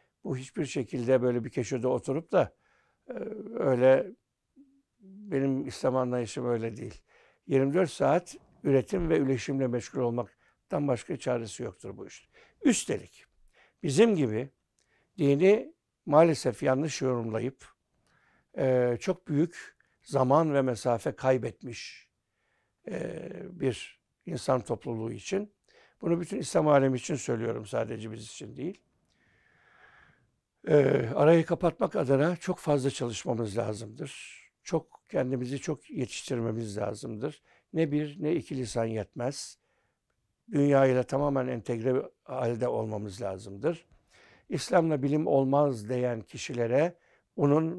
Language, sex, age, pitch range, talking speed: Turkish, male, 60-79, 120-155 Hz, 105 wpm